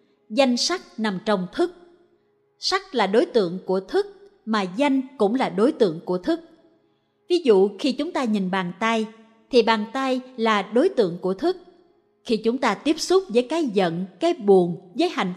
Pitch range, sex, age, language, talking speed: 205-300 Hz, female, 20-39, Vietnamese, 185 wpm